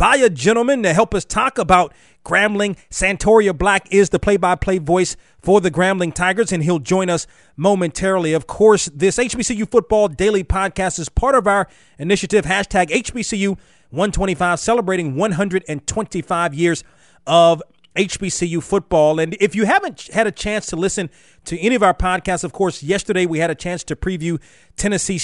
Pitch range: 175-215 Hz